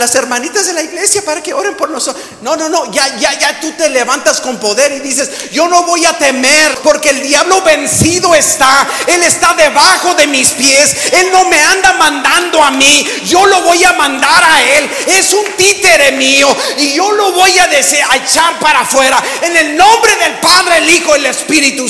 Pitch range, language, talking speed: 280-365 Hz, English, 210 wpm